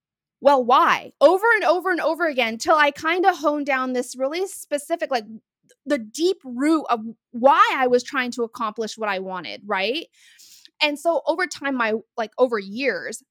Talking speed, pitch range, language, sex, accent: 185 wpm, 225-295 Hz, English, female, American